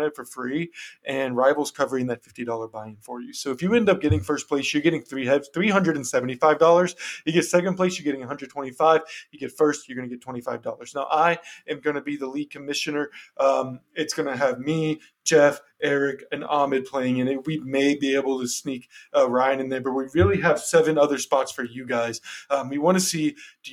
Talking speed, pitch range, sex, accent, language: 220 wpm, 135-170 Hz, male, American, English